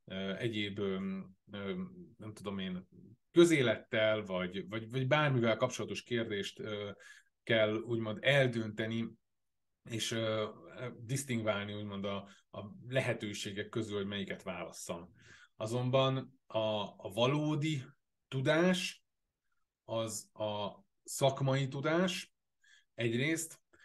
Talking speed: 90 wpm